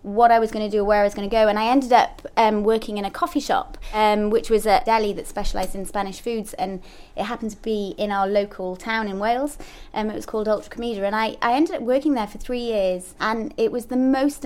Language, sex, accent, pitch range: English, female, British, 200-255 Hz